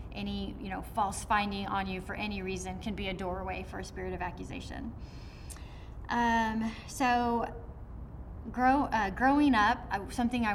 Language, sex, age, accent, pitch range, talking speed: English, female, 30-49, American, 190-240 Hz, 160 wpm